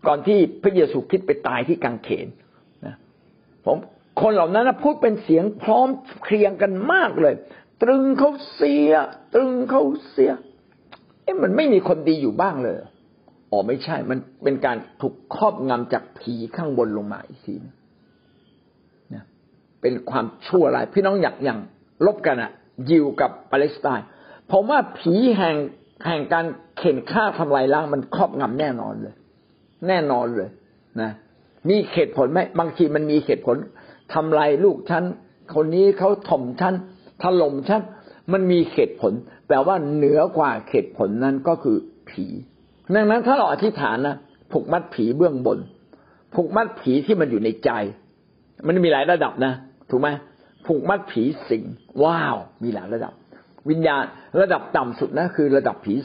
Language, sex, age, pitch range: Thai, male, 60-79, 140-205 Hz